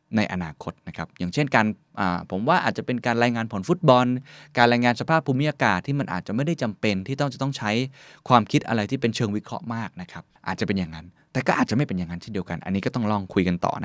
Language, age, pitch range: Thai, 20-39, 105-145 Hz